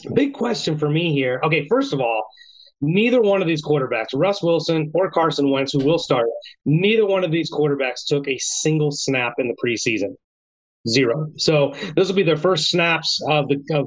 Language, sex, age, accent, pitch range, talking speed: English, male, 30-49, American, 140-175 Hz, 195 wpm